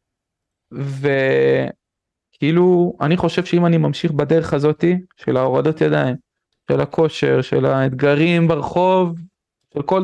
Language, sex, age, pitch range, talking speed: Hebrew, male, 20-39, 140-175 Hz, 110 wpm